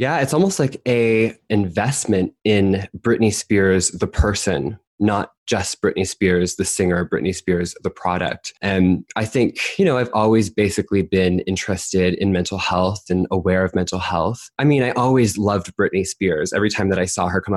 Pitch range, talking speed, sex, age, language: 95-120 Hz, 180 wpm, male, 20-39, English